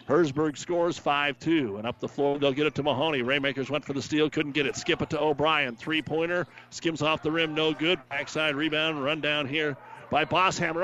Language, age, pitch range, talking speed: English, 40-59, 130-165 Hz, 210 wpm